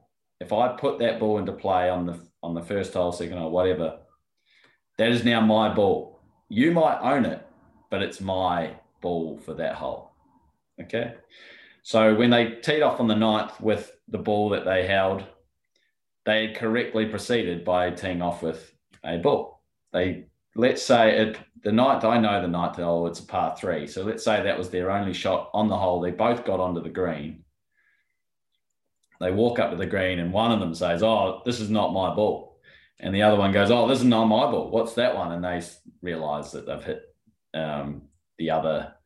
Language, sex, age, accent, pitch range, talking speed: English, male, 20-39, Australian, 85-110 Hz, 195 wpm